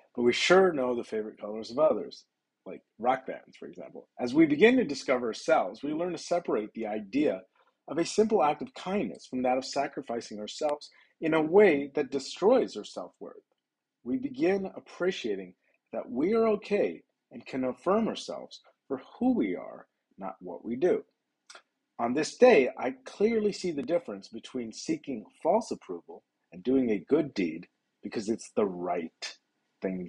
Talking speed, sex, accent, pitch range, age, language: 170 wpm, male, American, 105-160 Hz, 40-59, English